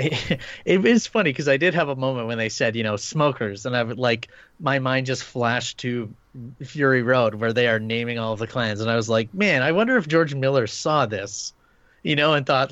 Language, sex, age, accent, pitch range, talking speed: English, male, 30-49, American, 115-145 Hz, 235 wpm